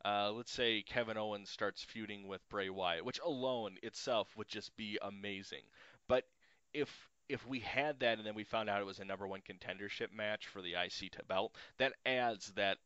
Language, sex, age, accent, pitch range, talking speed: English, male, 30-49, American, 100-130 Hz, 200 wpm